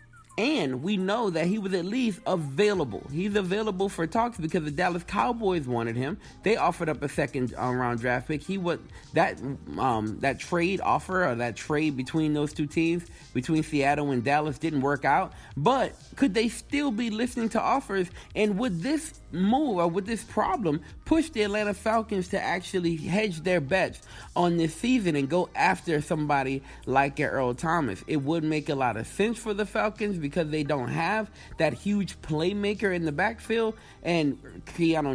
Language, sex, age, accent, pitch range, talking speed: English, male, 30-49, American, 140-190 Hz, 180 wpm